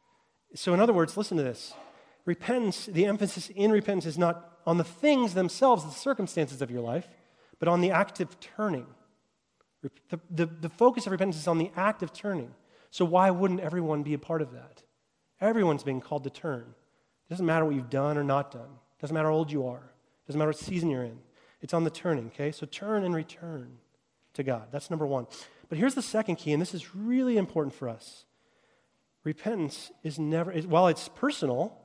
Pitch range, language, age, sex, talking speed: 150-195 Hz, English, 30-49, male, 205 wpm